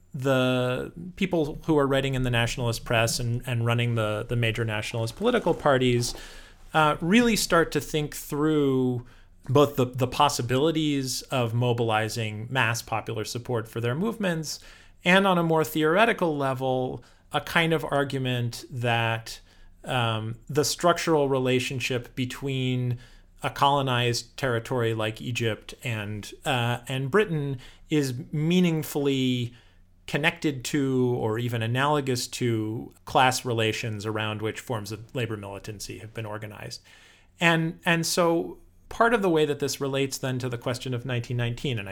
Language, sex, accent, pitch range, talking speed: English, male, American, 115-150 Hz, 140 wpm